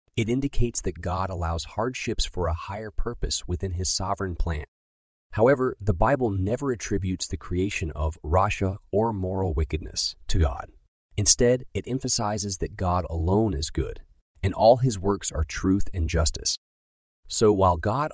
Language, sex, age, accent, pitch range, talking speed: English, male, 30-49, American, 80-110 Hz, 155 wpm